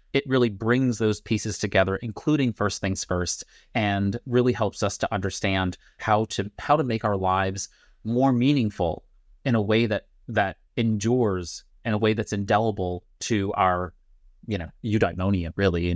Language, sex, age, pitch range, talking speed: English, male, 30-49, 95-115 Hz, 160 wpm